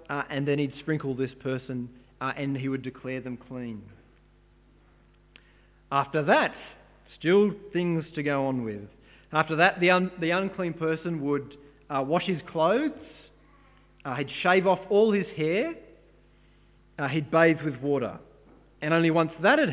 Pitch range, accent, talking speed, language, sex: 135-180 Hz, Australian, 155 wpm, English, male